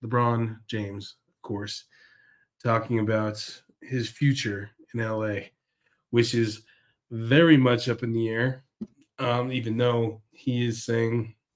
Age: 30-49